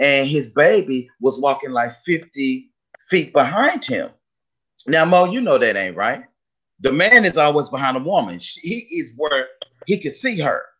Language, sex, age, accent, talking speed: English, male, 30-49, American, 170 wpm